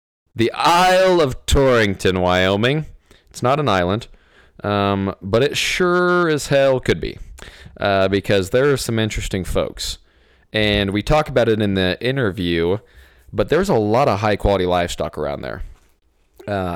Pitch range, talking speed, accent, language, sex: 90-115 Hz, 155 wpm, American, English, male